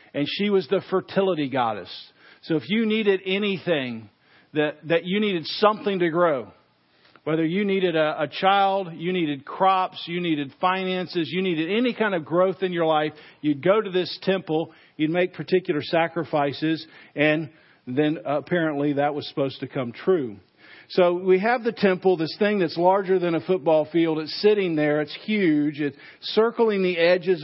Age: 50-69